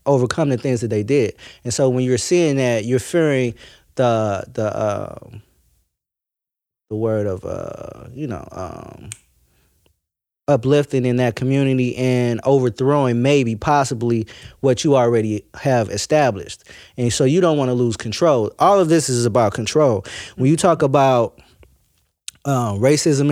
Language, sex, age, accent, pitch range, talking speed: English, male, 20-39, American, 120-145 Hz, 145 wpm